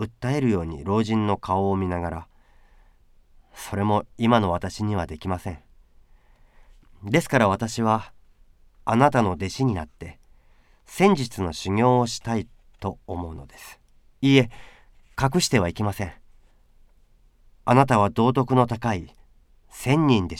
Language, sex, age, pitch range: Japanese, male, 40-59, 85-125 Hz